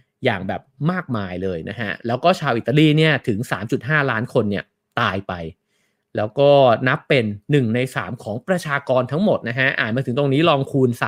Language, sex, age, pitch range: English, male, 30-49, 115-140 Hz